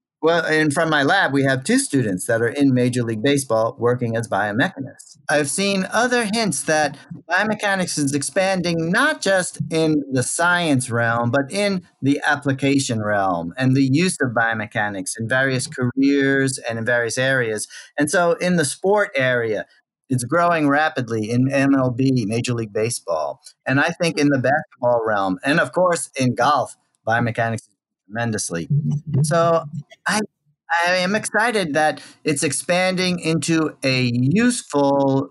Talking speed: 150 wpm